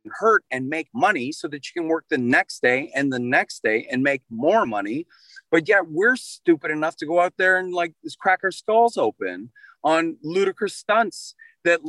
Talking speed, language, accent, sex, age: 200 wpm, English, American, male, 30-49